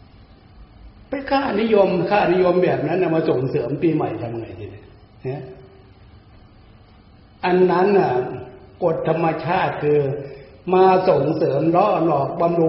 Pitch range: 105-170 Hz